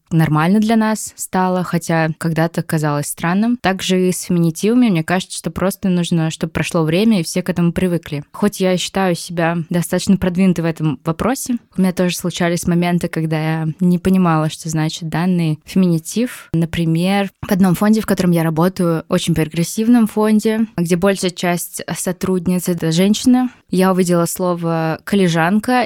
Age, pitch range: 20-39, 165-190 Hz